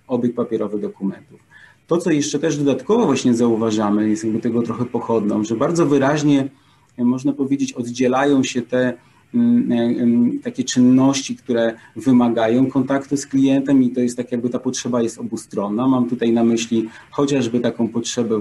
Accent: native